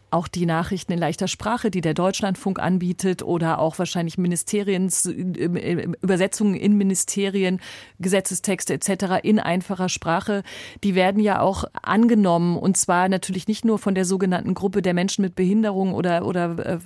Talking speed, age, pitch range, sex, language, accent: 150 wpm, 30-49, 175-200 Hz, female, German, German